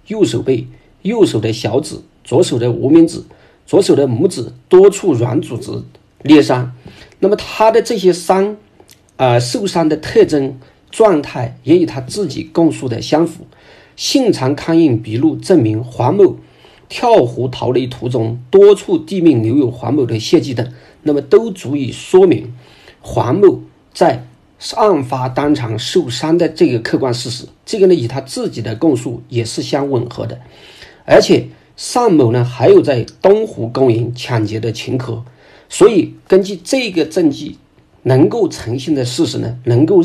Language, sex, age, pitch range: Chinese, male, 50-69, 120-165 Hz